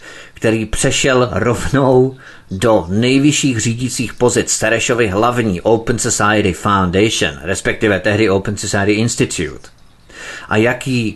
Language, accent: Czech, native